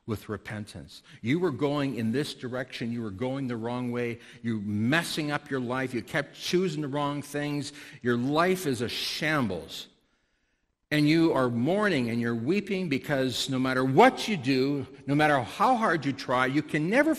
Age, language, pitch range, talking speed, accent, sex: 60-79, English, 115-160 Hz, 185 wpm, American, male